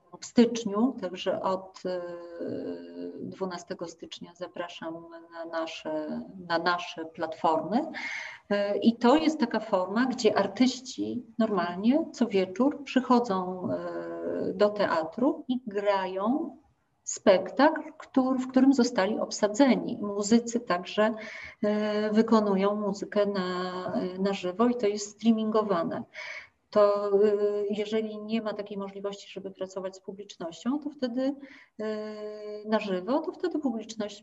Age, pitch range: 40-59, 185-225 Hz